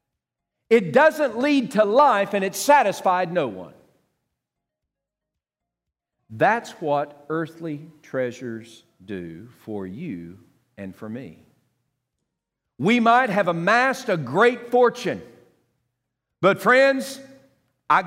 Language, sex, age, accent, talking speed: English, male, 50-69, American, 100 wpm